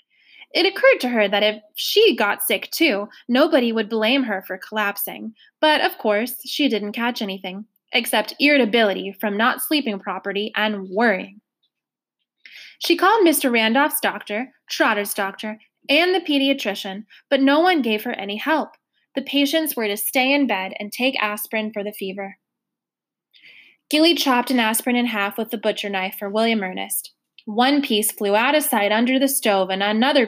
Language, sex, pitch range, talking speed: English, female, 205-270 Hz, 170 wpm